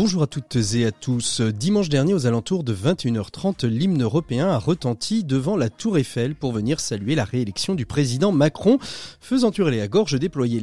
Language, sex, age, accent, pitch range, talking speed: French, male, 30-49, French, 120-175 Hz, 185 wpm